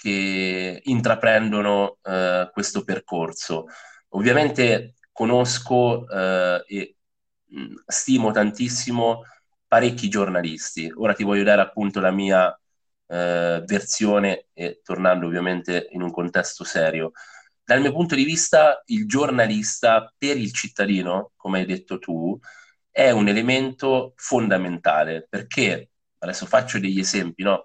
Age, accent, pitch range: 30-49, native, 90-110 Hz